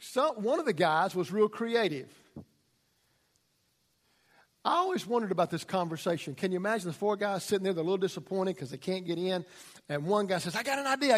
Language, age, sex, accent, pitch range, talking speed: English, 50-69, male, American, 180-240 Hz, 205 wpm